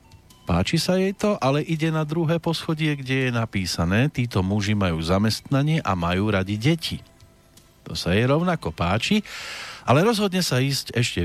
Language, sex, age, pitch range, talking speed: Slovak, male, 40-59, 95-145 Hz, 160 wpm